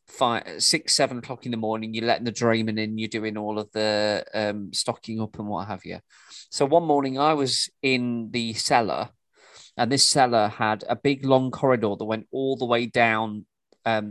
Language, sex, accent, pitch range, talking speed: English, male, British, 110-135 Hz, 200 wpm